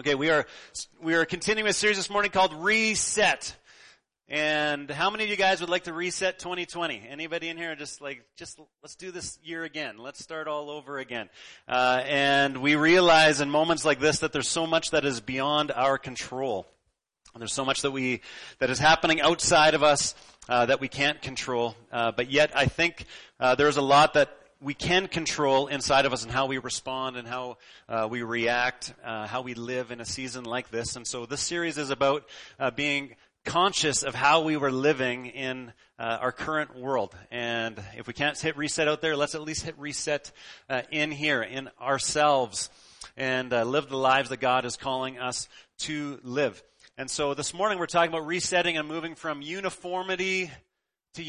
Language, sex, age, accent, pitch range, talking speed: English, male, 30-49, American, 125-160 Hz, 195 wpm